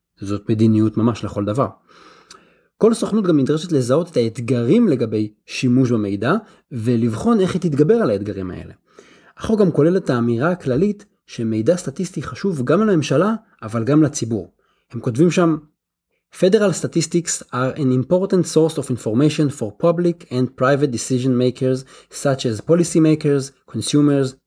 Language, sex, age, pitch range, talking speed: Hebrew, male, 30-49, 115-160 Hz, 140 wpm